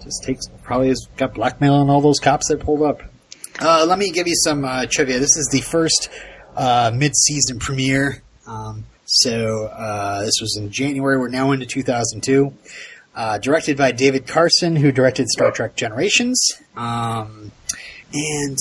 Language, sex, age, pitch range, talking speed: English, male, 30-49, 115-150 Hz, 170 wpm